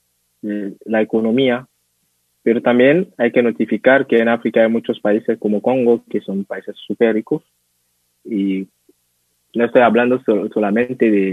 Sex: male